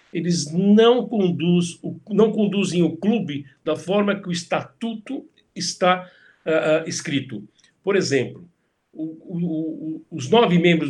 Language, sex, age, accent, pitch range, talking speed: Portuguese, male, 60-79, Brazilian, 160-205 Hz, 95 wpm